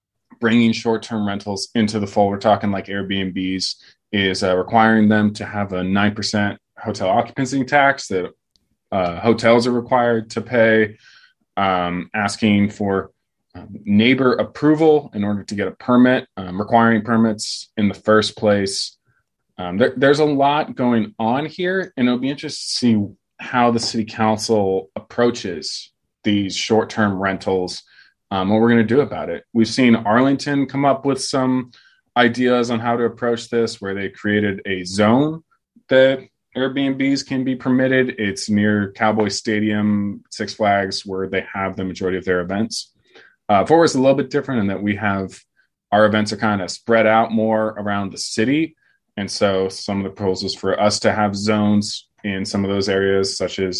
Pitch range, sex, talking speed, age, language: 100-120 Hz, male, 170 wpm, 20-39, English